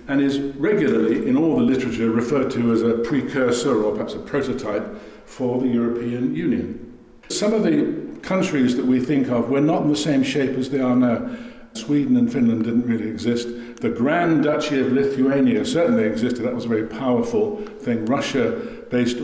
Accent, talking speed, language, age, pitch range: British, 185 wpm, English, 60-79, 115-150 Hz